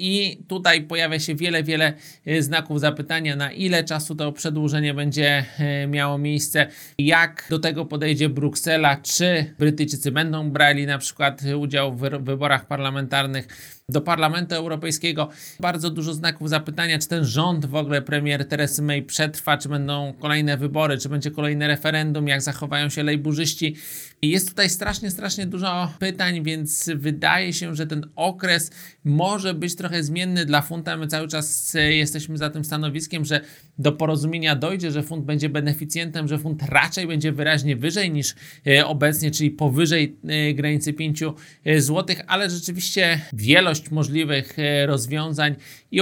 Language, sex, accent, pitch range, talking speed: Polish, male, native, 150-165 Hz, 145 wpm